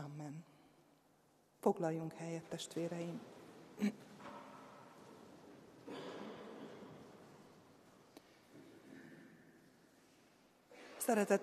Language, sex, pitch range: Hungarian, female, 180-215 Hz